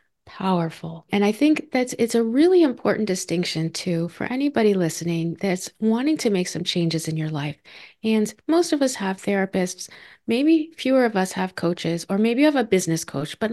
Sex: female